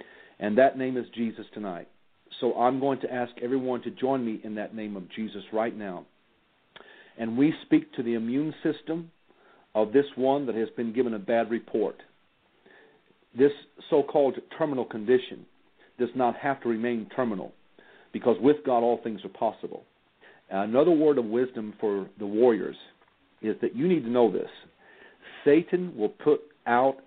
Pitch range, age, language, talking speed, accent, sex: 110-135 Hz, 50-69, English, 165 wpm, American, male